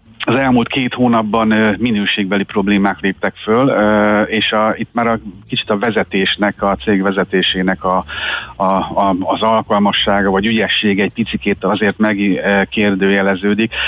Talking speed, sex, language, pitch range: 130 wpm, male, Hungarian, 95-110 Hz